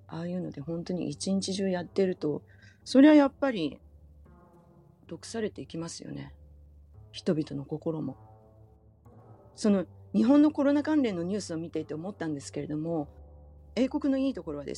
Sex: female